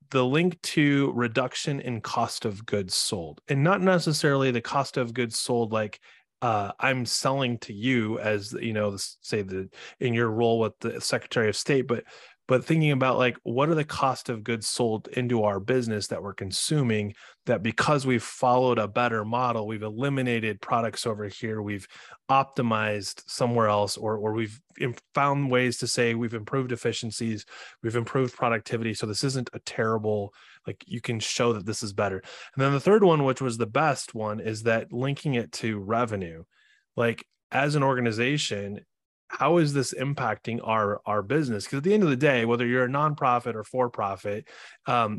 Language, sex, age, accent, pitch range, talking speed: English, male, 30-49, American, 105-130 Hz, 180 wpm